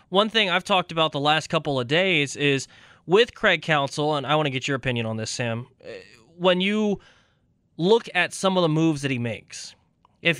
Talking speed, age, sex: 210 wpm, 20-39, male